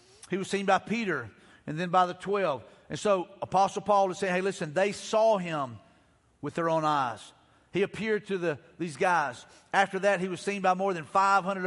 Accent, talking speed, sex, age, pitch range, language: American, 205 wpm, male, 40-59, 180-220 Hz, English